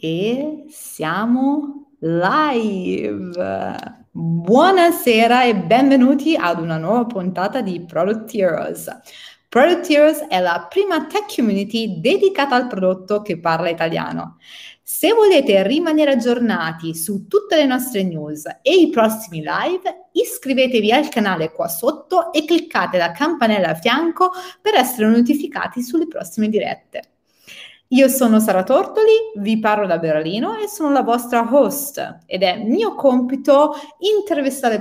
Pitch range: 200-300 Hz